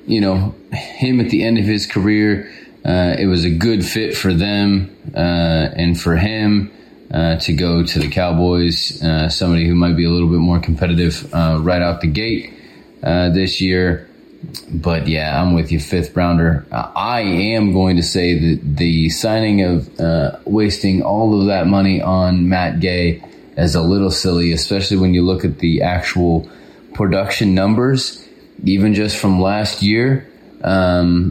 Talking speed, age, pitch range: 170 wpm, 30-49, 85-95 Hz